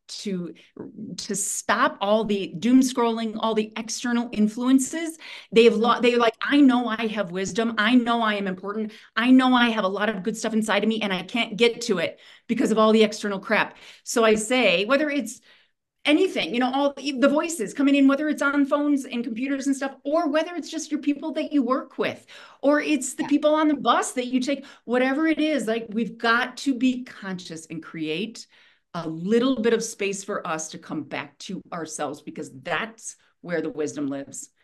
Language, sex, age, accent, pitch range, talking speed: English, female, 40-59, American, 195-260 Hz, 210 wpm